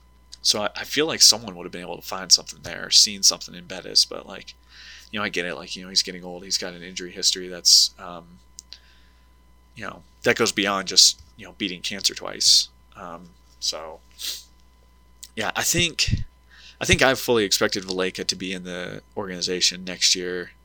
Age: 20-39